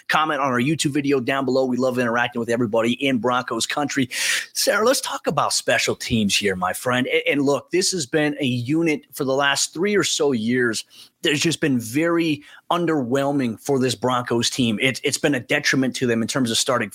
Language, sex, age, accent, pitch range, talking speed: English, male, 30-49, American, 125-150 Hz, 205 wpm